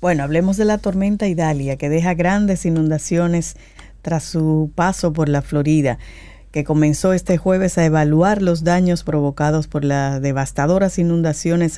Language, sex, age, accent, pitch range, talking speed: Spanish, female, 50-69, American, 150-180 Hz, 150 wpm